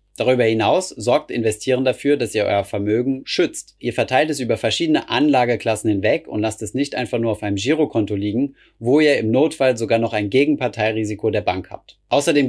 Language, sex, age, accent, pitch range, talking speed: German, male, 30-49, German, 105-130 Hz, 185 wpm